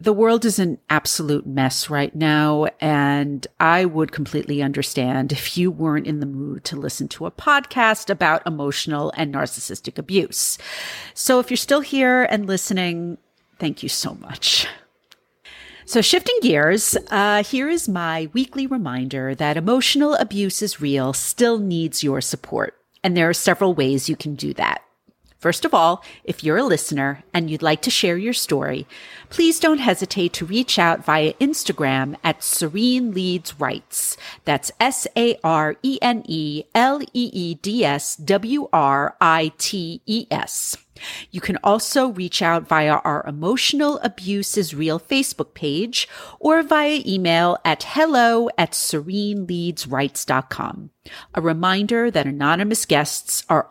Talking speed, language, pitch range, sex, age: 135 wpm, English, 150-230 Hz, female, 40-59